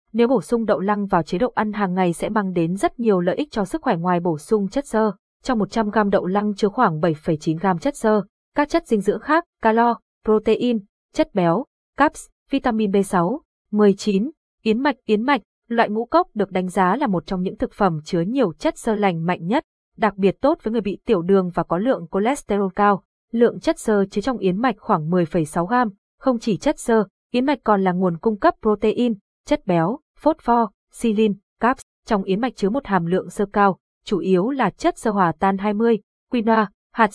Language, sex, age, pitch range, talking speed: Vietnamese, female, 20-39, 190-240 Hz, 210 wpm